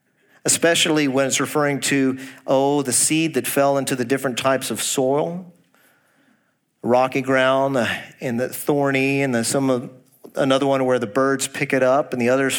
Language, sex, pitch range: English, male, 125-155 Hz